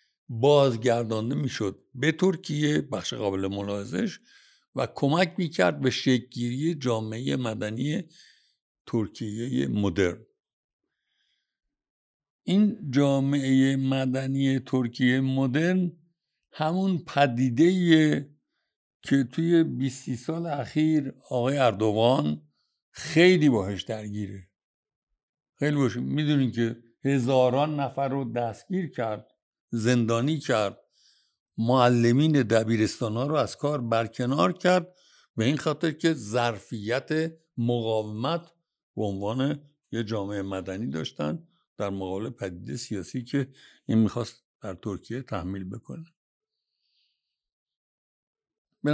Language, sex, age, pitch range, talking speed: Persian, male, 60-79, 115-155 Hz, 90 wpm